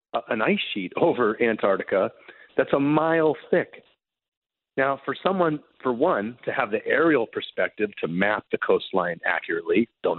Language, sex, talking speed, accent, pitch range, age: English, male, 145 wpm, American, 105-150 Hz, 40-59